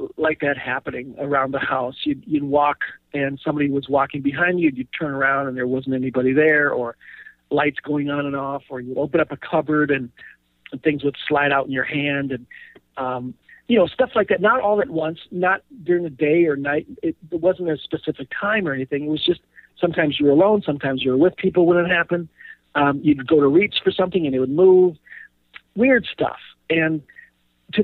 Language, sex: English, male